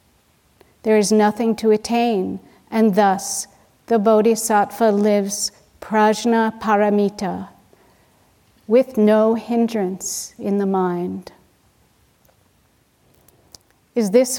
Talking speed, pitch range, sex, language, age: 85 wpm, 190-225 Hz, female, English, 50-69